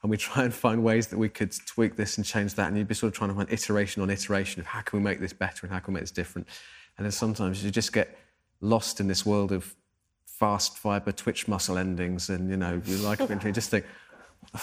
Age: 30-49